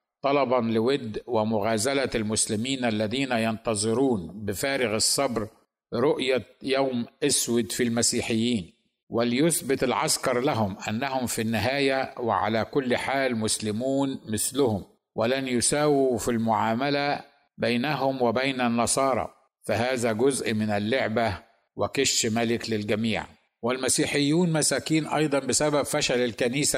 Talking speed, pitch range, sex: 100 wpm, 110-130 Hz, male